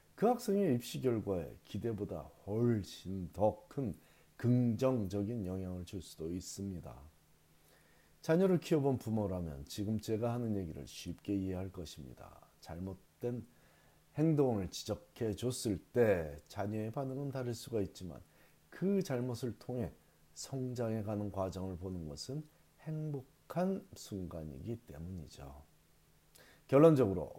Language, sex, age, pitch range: Korean, male, 40-59, 90-130 Hz